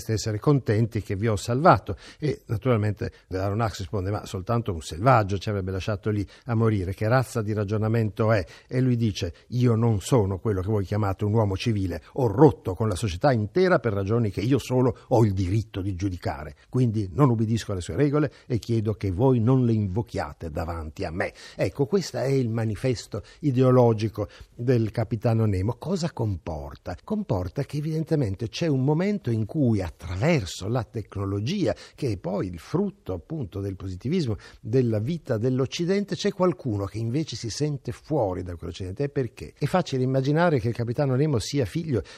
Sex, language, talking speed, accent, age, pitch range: male, Italian, 175 wpm, native, 60-79, 100-130 Hz